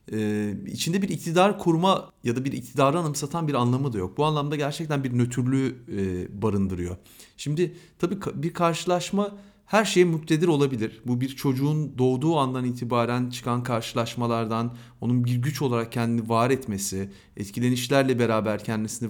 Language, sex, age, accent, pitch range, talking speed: Turkish, male, 40-59, native, 110-155 Hz, 140 wpm